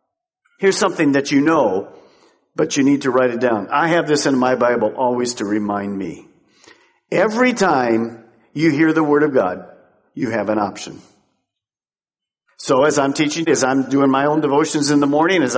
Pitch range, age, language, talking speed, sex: 125-160 Hz, 50-69, English, 185 wpm, male